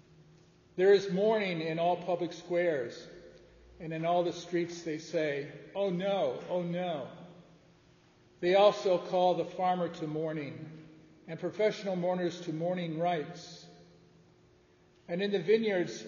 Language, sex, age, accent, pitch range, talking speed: English, male, 50-69, American, 155-185 Hz, 130 wpm